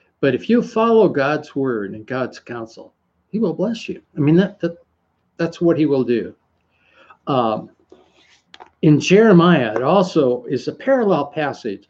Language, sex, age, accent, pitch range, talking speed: English, male, 60-79, American, 135-195 Hz, 155 wpm